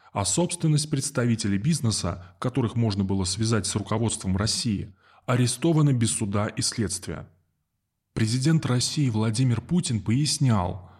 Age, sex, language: 20-39, male, Russian